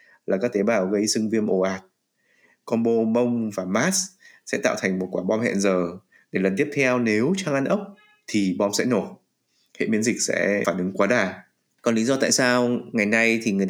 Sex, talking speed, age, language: male, 225 wpm, 20-39, Vietnamese